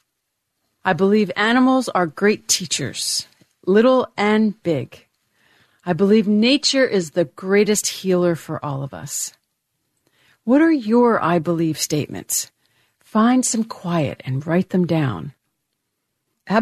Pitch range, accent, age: 160-210 Hz, American, 50-69